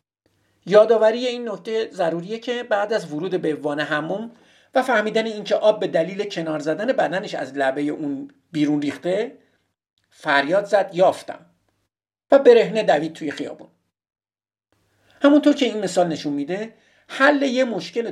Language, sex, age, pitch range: Persian, male, 50-69, 150-240 Hz